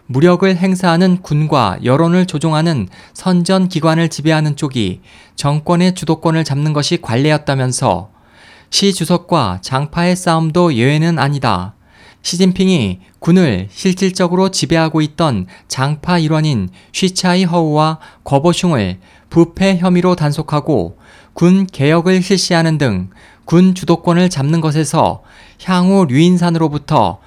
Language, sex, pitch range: Korean, male, 135-180 Hz